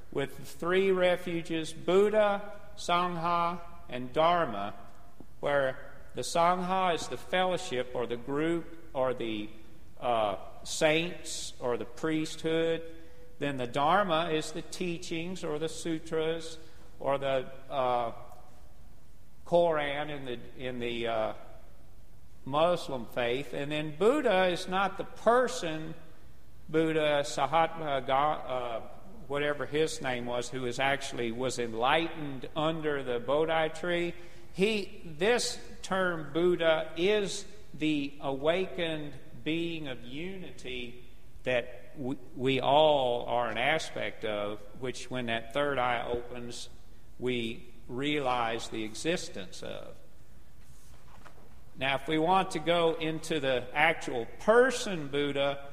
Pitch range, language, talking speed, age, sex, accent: 125-165 Hz, English, 115 wpm, 50-69, male, American